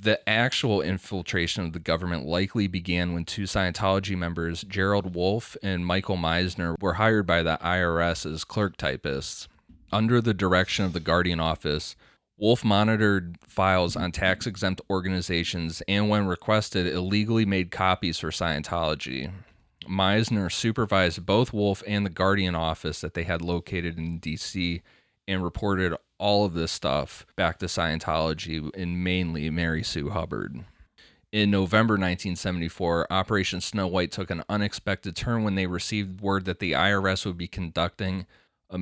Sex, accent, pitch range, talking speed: male, American, 85-100 Hz, 145 wpm